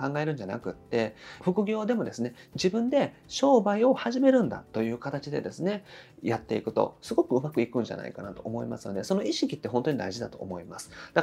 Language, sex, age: Japanese, male, 30-49